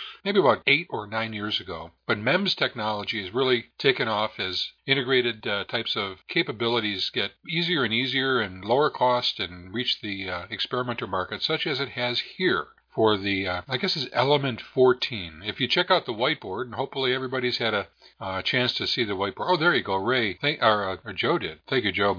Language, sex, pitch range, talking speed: English, male, 100-130 Hz, 210 wpm